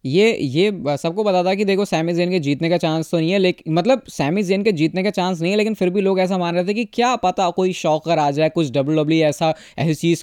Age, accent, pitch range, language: 20-39, native, 150-185 Hz, Hindi